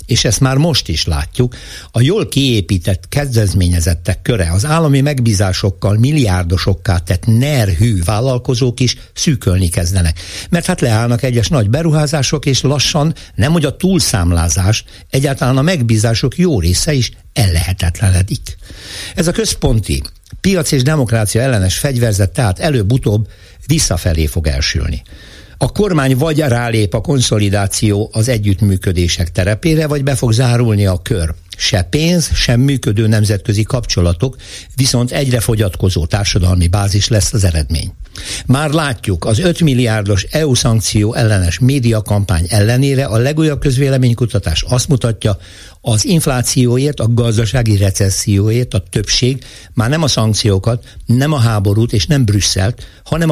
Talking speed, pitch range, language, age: 130 wpm, 95-135 Hz, Hungarian, 60-79